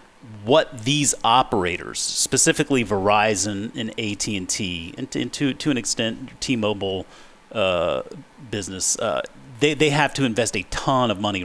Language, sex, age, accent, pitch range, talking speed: English, male, 30-49, American, 100-130 Hz, 135 wpm